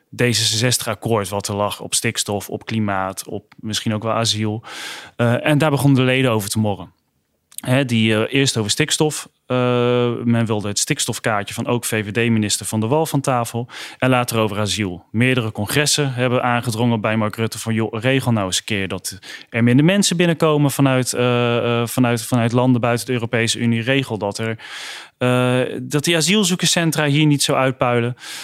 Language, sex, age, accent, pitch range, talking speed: Dutch, male, 30-49, Dutch, 115-145 Hz, 180 wpm